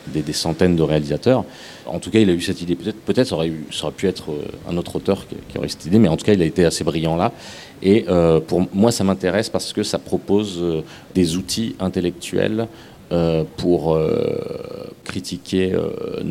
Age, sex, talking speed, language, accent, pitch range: 40-59, male, 205 wpm, French, French, 80-95 Hz